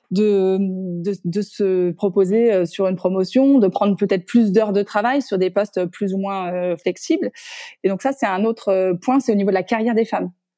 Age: 20-39